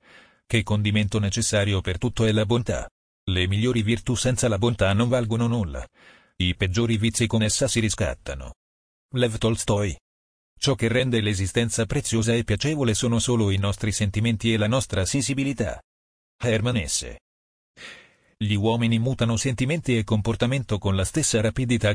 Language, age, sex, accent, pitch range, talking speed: Italian, 40-59, male, native, 100-120 Hz, 150 wpm